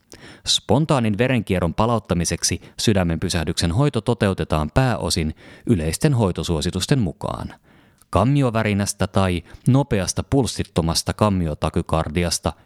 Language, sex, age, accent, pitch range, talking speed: Finnish, male, 30-49, native, 85-110 Hz, 75 wpm